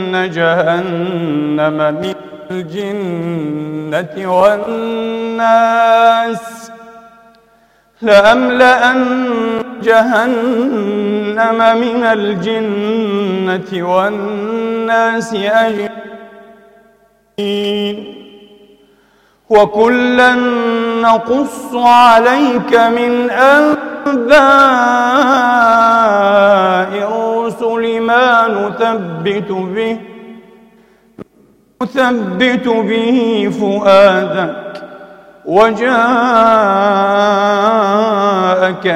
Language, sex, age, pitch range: English, male, 40-59, 190-230 Hz